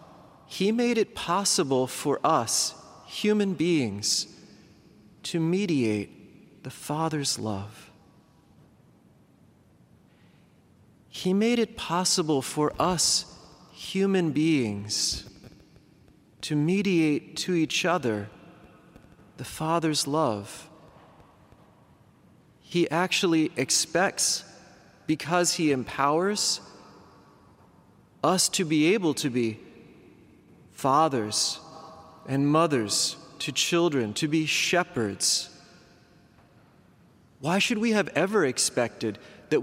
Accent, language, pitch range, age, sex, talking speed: American, English, 140-185 Hz, 40-59, male, 85 wpm